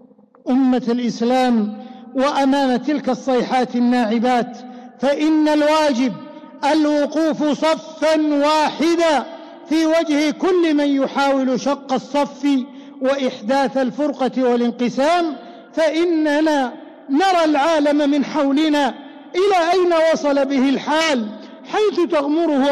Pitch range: 255-315 Hz